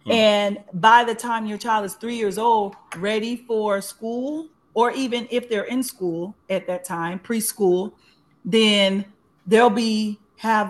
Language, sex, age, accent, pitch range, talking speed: English, female, 40-59, American, 185-230 Hz, 150 wpm